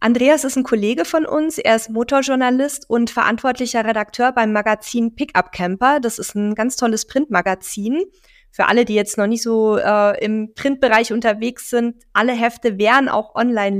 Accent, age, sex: German, 20-39, female